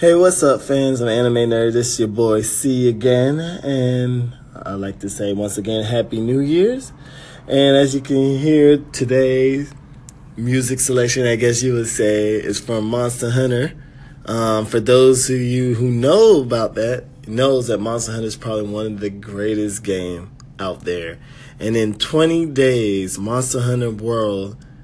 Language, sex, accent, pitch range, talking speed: English, male, American, 110-135 Hz, 165 wpm